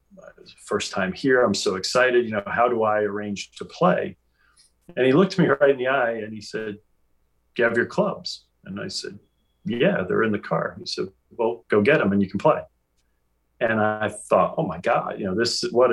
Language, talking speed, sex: English, 215 wpm, male